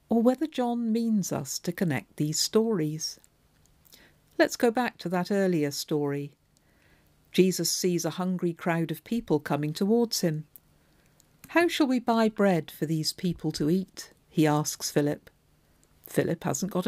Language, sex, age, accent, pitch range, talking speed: English, female, 50-69, British, 155-210 Hz, 150 wpm